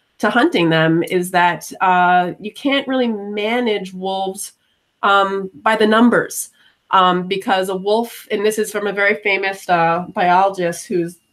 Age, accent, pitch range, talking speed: 30-49, American, 175-210 Hz, 155 wpm